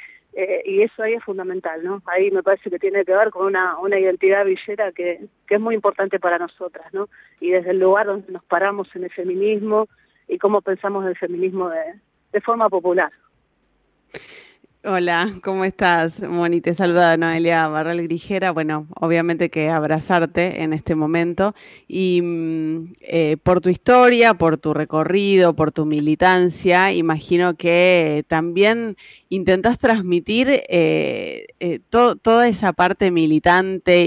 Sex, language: female, Spanish